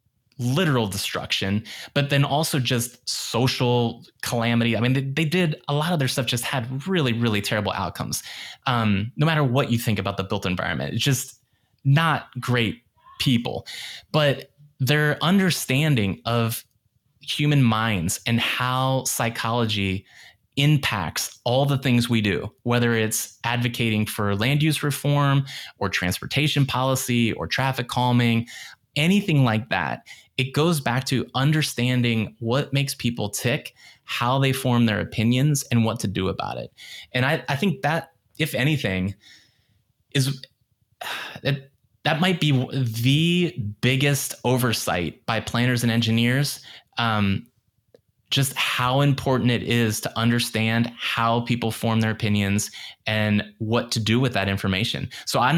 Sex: male